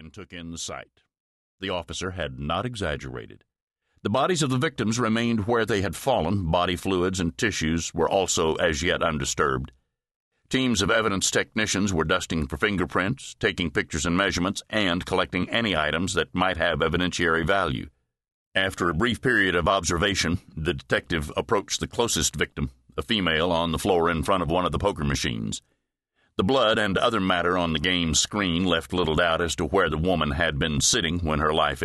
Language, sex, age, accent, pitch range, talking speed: English, male, 60-79, American, 80-105 Hz, 185 wpm